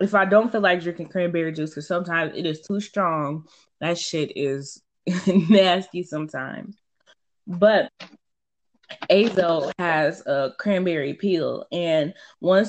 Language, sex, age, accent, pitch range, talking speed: English, female, 20-39, American, 160-195 Hz, 130 wpm